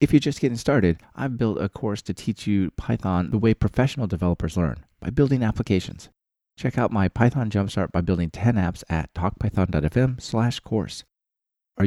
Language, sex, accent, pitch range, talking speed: English, male, American, 95-120 Hz, 175 wpm